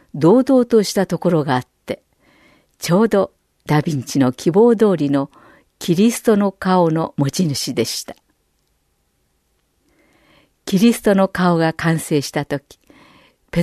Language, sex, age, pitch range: Japanese, female, 50-69, 155-215 Hz